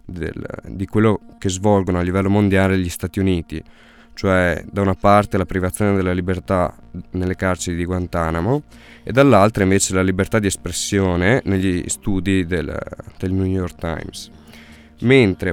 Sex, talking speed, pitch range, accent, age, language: male, 145 wpm, 90-105 Hz, native, 20-39, Italian